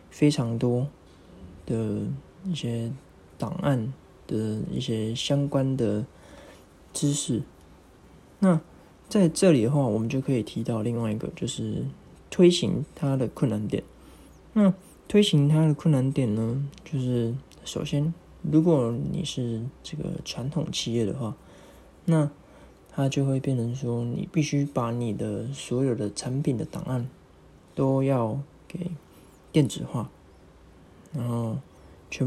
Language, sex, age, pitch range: Chinese, male, 20-39, 115-150 Hz